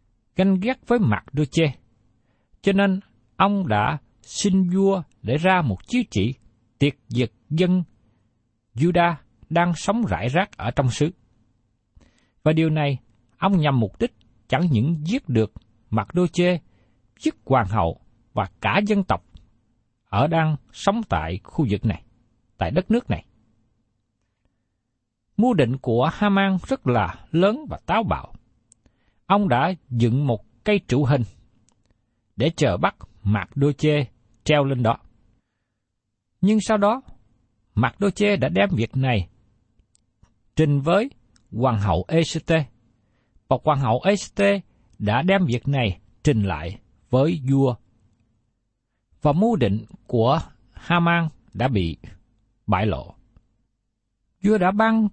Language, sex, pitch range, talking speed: Vietnamese, male, 110-170 Hz, 135 wpm